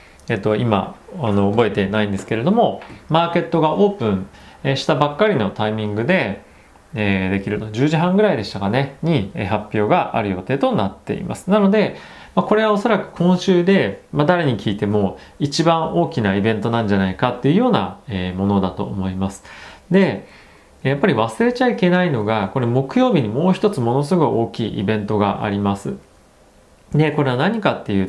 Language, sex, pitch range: Japanese, male, 105-170 Hz